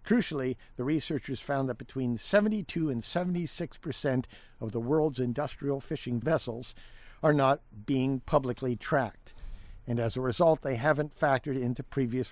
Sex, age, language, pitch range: male, 60-79, English, 120-150 Hz